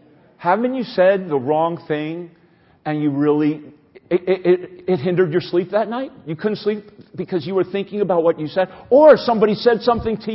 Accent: American